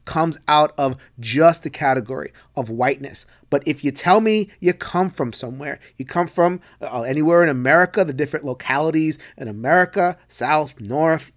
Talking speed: 165 wpm